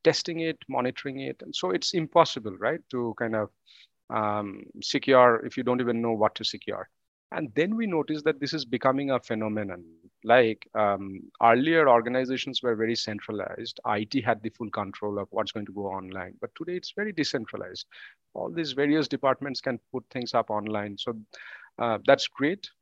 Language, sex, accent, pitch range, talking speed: English, male, Indian, 110-140 Hz, 180 wpm